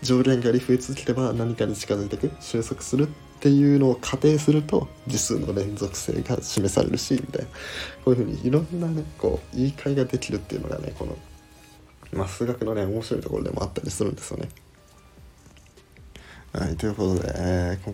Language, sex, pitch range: Japanese, male, 85-110 Hz